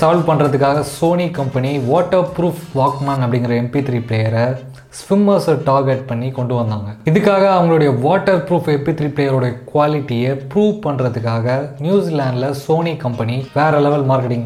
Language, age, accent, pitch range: Tamil, 20-39, native, 125-160 Hz